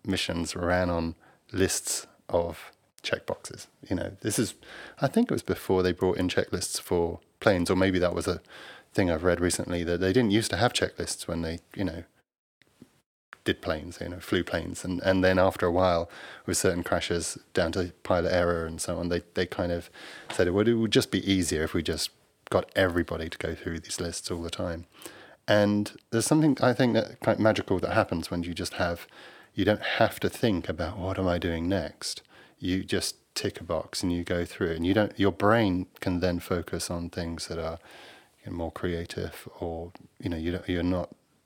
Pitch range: 85-100 Hz